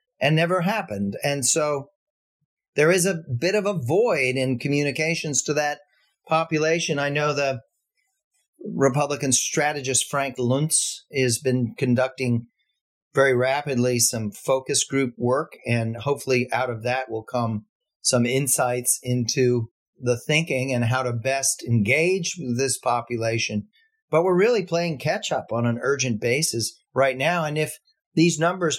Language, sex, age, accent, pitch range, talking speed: English, male, 40-59, American, 125-160 Hz, 140 wpm